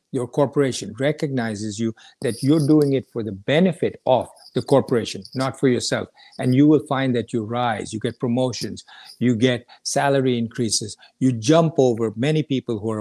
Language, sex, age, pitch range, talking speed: English, male, 50-69, 115-150 Hz, 175 wpm